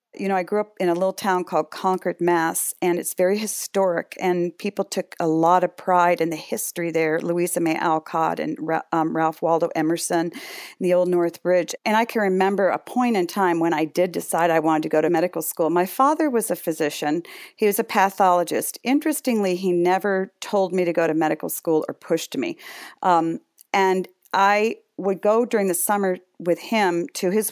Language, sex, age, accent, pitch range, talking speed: English, female, 50-69, American, 165-200 Hz, 200 wpm